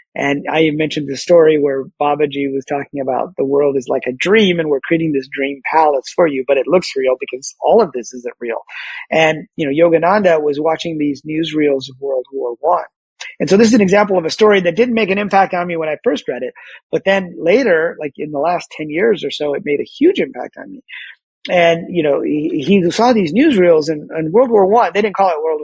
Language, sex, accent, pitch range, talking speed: English, male, American, 140-185 Hz, 240 wpm